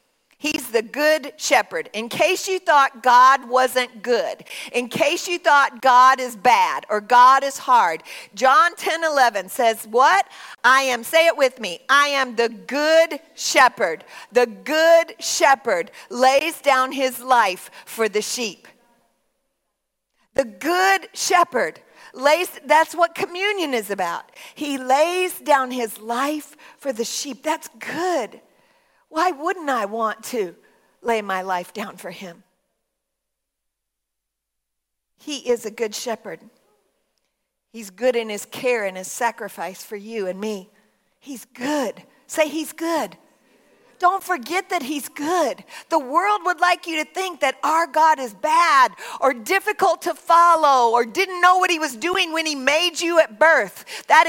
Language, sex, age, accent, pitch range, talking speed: English, female, 50-69, American, 240-335 Hz, 150 wpm